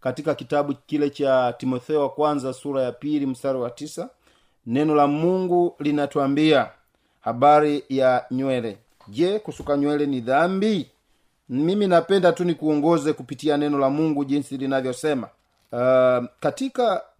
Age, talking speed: 40-59, 130 wpm